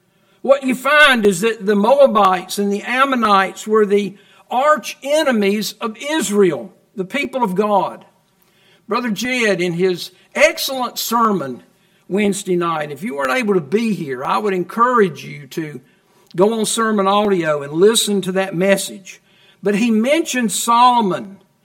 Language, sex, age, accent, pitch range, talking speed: English, male, 60-79, American, 195-245 Hz, 145 wpm